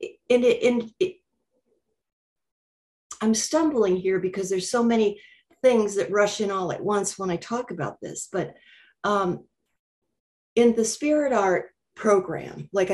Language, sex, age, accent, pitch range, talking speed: English, female, 50-69, American, 170-210 Hz, 145 wpm